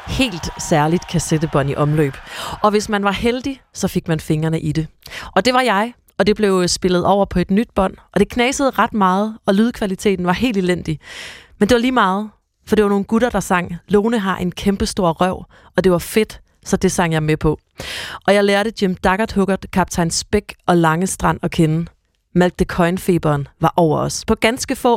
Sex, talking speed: female, 210 wpm